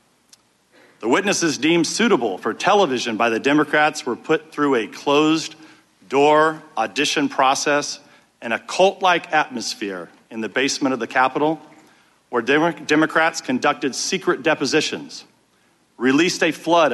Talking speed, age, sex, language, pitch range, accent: 120 wpm, 50-69, male, English, 140-165 Hz, American